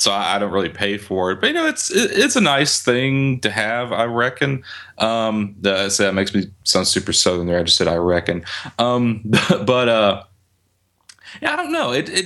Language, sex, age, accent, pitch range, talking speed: English, male, 30-49, American, 100-125 Hz, 215 wpm